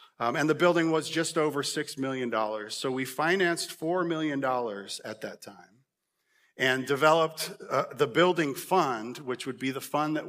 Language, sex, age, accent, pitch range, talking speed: English, male, 50-69, American, 120-150 Hz, 170 wpm